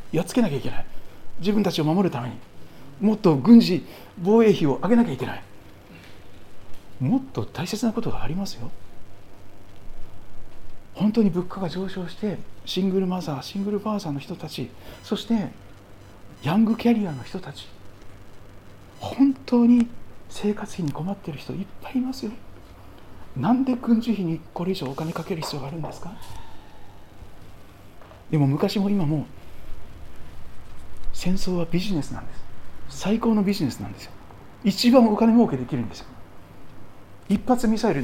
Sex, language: male, Japanese